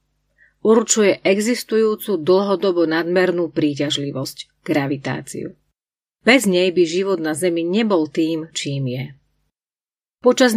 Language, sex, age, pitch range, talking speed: Slovak, female, 40-59, 160-205 Hz, 95 wpm